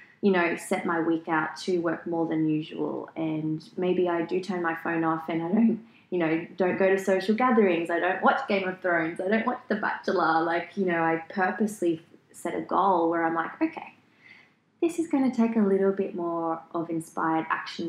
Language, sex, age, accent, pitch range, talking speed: English, female, 20-39, Australian, 160-195 Hz, 215 wpm